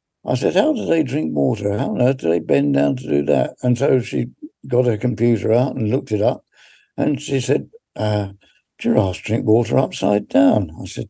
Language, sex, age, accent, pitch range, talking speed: English, male, 60-79, British, 105-125 Hz, 210 wpm